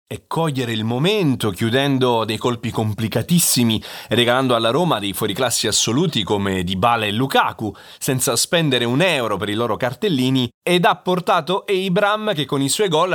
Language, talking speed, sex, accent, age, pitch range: Italian, 165 wpm, male, native, 30-49, 105-140 Hz